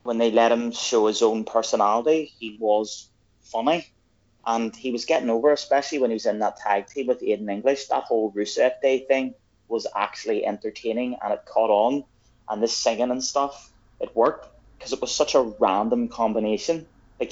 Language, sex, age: English, male, 20-39